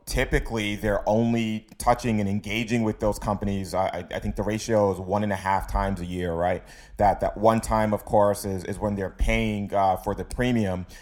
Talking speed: 205 wpm